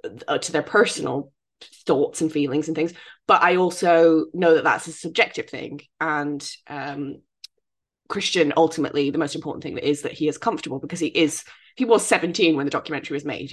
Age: 20-39